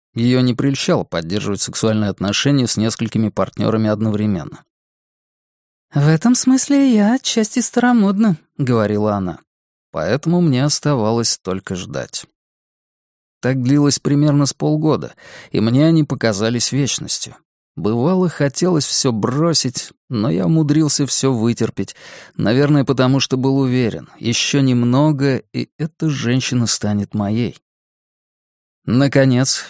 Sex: male